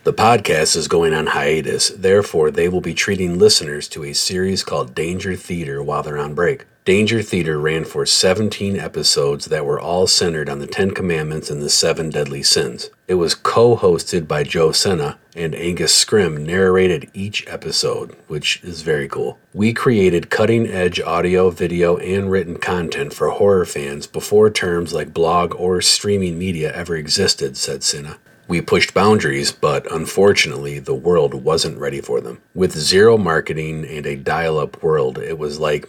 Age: 40-59